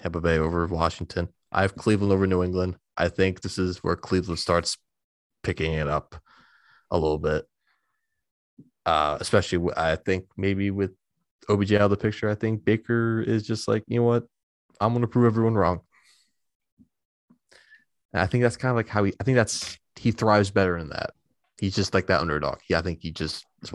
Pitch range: 90-115 Hz